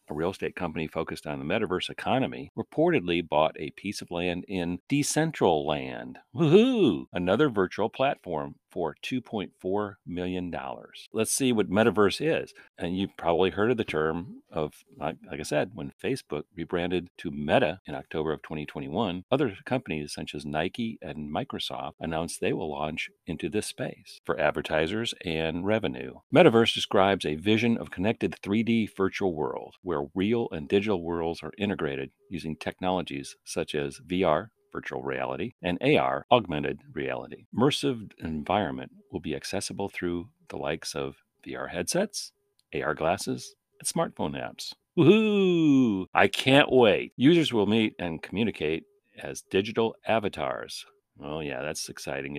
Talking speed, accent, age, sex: 145 wpm, American, 50-69, male